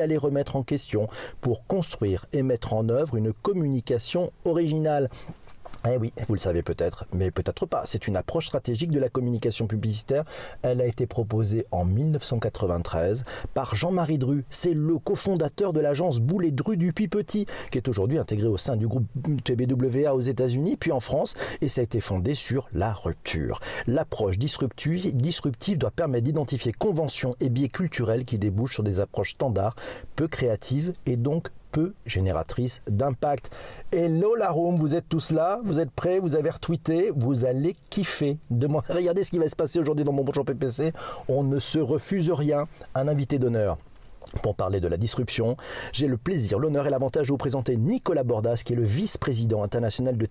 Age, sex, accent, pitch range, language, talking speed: 40-59, male, French, 115-155 Hz, French, 180 wpm